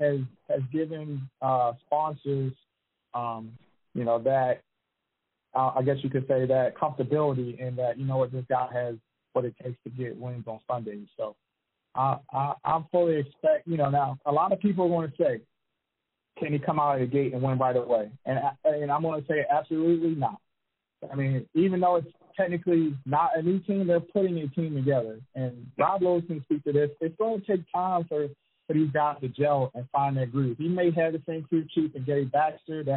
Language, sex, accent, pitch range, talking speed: English, male, American, 130-165 Hz, 210 wpm